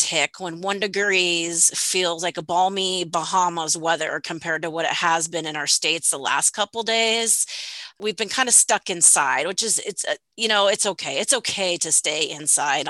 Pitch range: 170-220 Hz